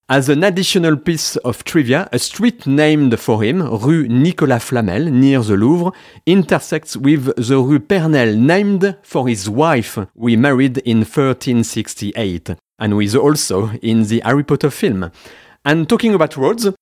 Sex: male